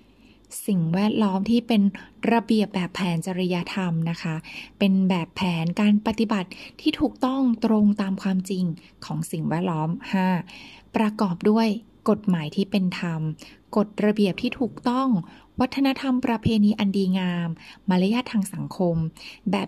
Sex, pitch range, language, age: female, 180-230 Hz, Thai, 20-39